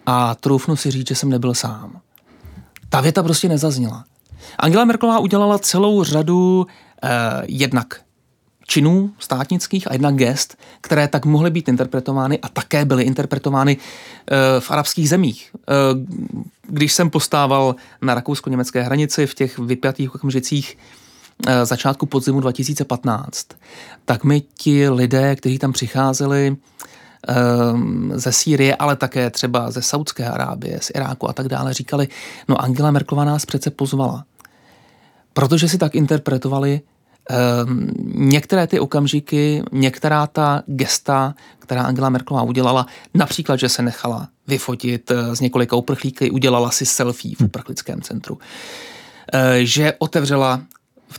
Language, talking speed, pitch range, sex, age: Czech, 130 wpm, 125-150 Hz, male, 30-49